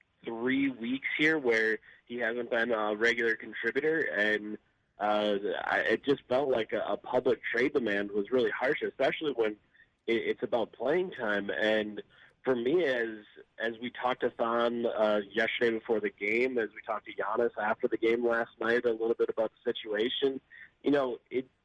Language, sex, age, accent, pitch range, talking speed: English, male, 20-39, American, 110-135 Hz, 180 wpm